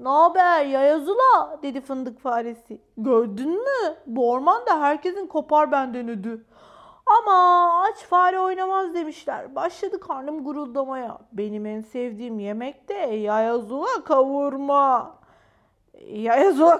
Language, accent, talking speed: Turkish, native, 105 wpm